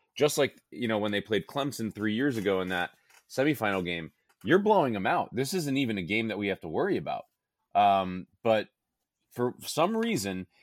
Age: 30-49